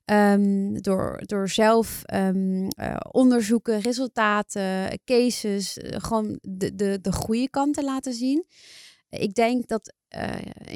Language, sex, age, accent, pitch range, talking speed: Dutch, female, 30-49, Dutch, 195-225 Hz, 135 wpm